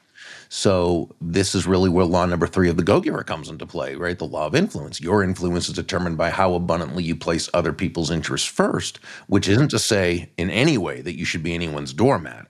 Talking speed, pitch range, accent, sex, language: 215 wpm, 85-105 Hz, American, male, English